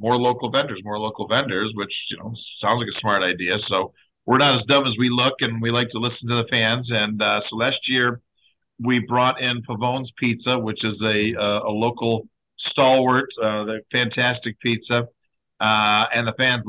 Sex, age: male, 50-69